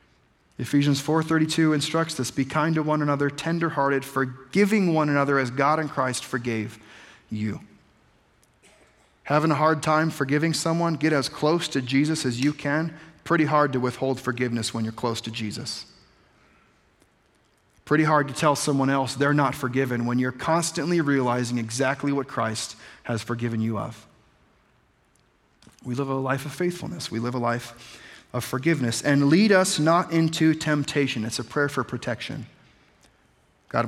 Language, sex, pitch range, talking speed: English, male, 125-160 Hz, 155 wpm